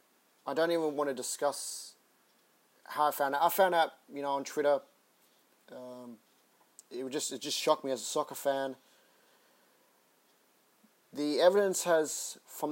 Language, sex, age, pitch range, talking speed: English, male, 30-49, 130-150 Hz, 150 wpm